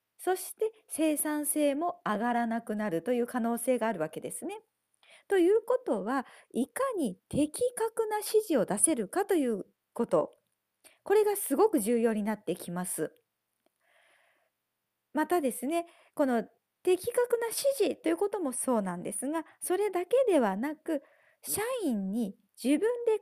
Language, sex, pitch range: Japanese, female, 230-390 Hz